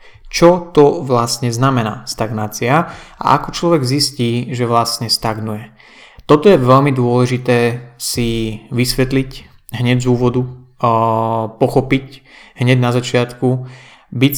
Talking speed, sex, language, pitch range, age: 110 wpm, male, Slovak, 115-135 Hz, 30-49